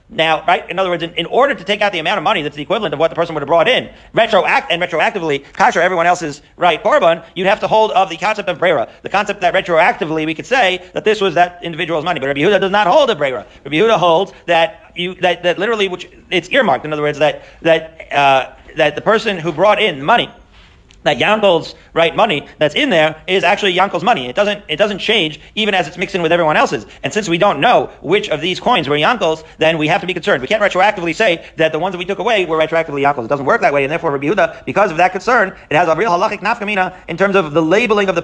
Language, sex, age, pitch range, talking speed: English, male, 40-59, 160-205 Hz, 265 wpm